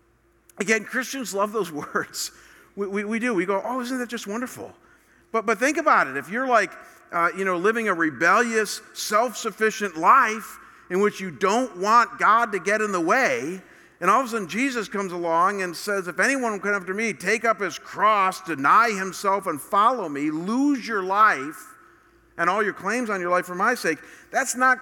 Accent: American